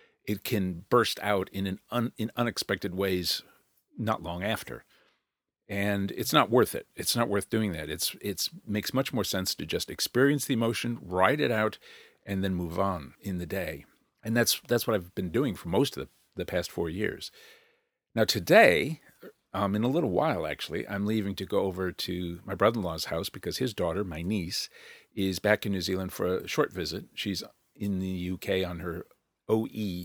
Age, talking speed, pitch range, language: 50-69, 200 wpm, 90-105 Hz, English